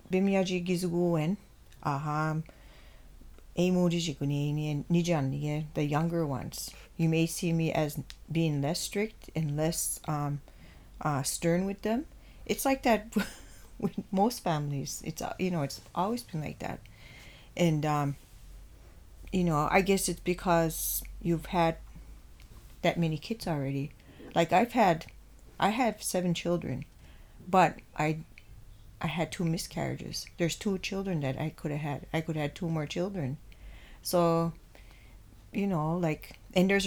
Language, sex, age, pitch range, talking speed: English, female, 40-59, 140-175 Hz, 135 wpm